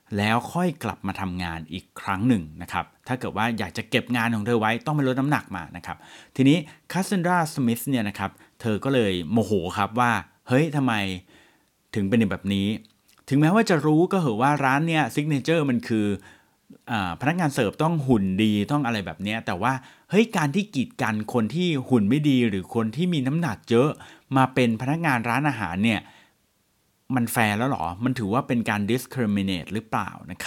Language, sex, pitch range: Thai, male, 105-150 Hz